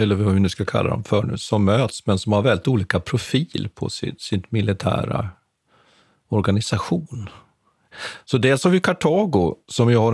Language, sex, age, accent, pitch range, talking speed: Swedish, male, 40-59, native, 100-135 Hz, 180 wpm